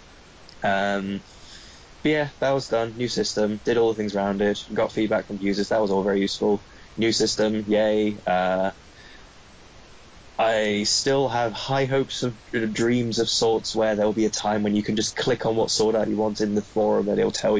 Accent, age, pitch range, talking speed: British, 10-29, 100-115 Hz, 200 wpm